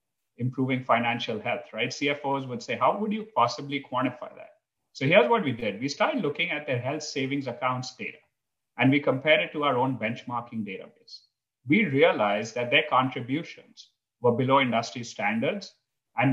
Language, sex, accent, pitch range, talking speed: English, male, Indian, 115-145 Hz, 170 wpm